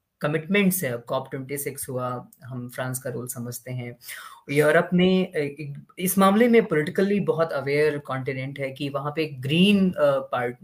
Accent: native